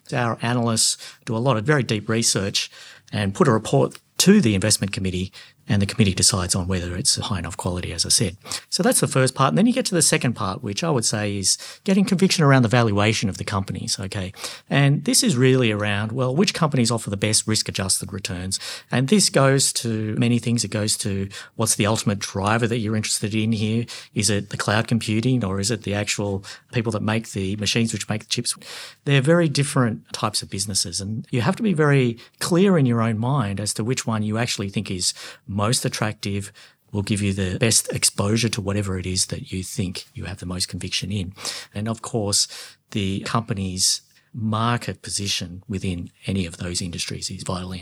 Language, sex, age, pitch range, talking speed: English, male, 50-69, 100-125 Hz, 210 wpm